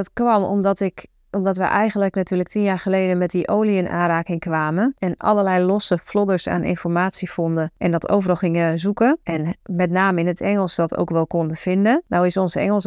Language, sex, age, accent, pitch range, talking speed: Dutch, female, 30-49, Dutch, 175-205 Hz, 205 wpm